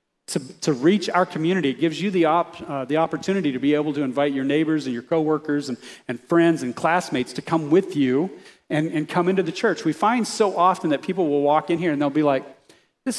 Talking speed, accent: 245 wpm, American